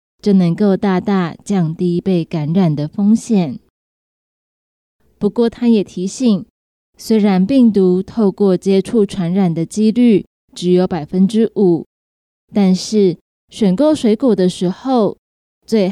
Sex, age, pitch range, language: female, 20-39, 180-220 Hz, Chinese